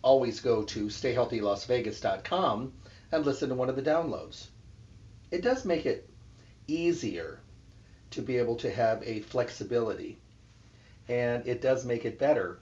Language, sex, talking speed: English, male, 140 wpm